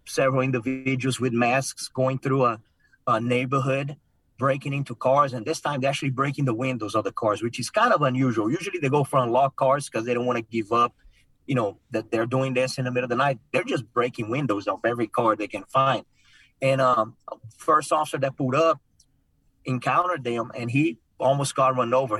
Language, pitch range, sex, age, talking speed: English, 120-135 Hz, male, 30-49, 215 wpm